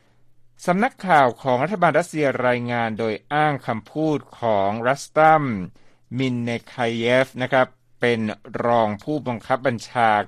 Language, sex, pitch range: Thai, male, 115-155 Hz